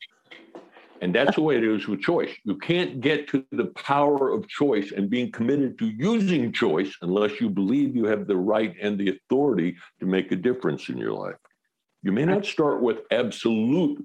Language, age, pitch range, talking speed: English, 60-79, 105-150 Hz, 190 wpm